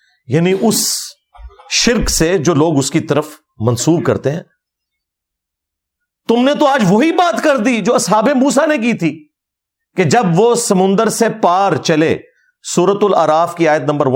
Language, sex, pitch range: Urdu, male, 130-195 Hz